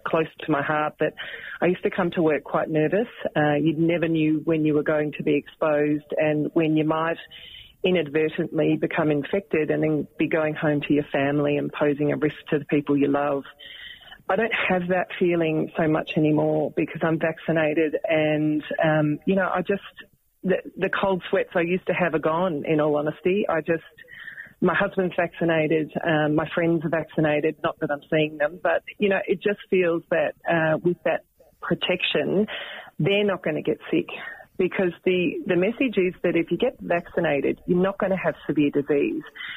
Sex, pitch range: female, 155-185 Hz